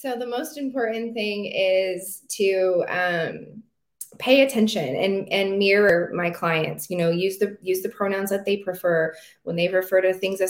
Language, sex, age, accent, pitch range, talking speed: English, female, 20-39, American, 170-210 Hz, 175 wpm